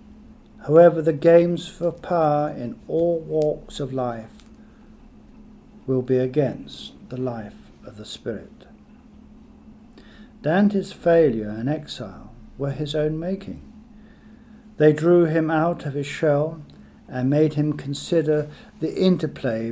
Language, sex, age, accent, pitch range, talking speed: English, male, 50-69, British, 130-175 Hz, 120 wpm